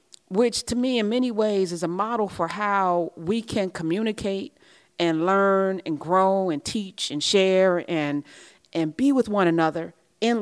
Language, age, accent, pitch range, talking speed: English, 30-49, American, 175-250 Hz, 165 wpm